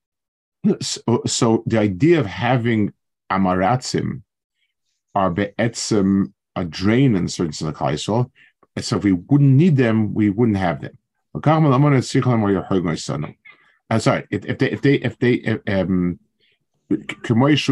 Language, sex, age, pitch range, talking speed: English, male, 50-69, 95-130 Hz, 90 wpm